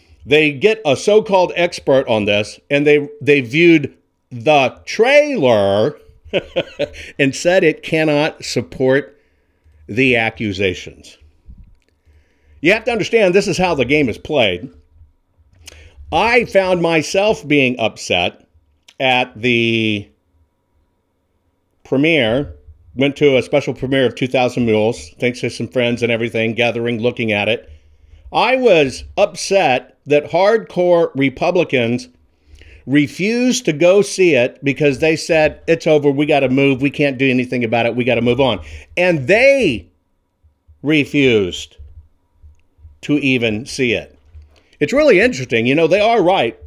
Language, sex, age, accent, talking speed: English, male, 50-69, American, 130 wpm